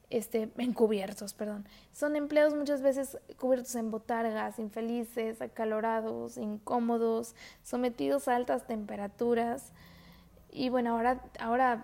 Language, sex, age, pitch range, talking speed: Spanish, female, 20-39, 225-265 Hz, 105 wpm